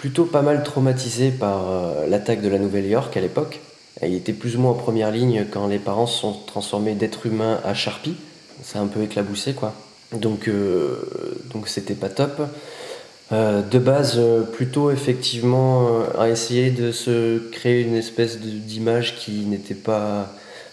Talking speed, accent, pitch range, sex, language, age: 170 wpm, French, 105-125 Hz, male, French, 20-39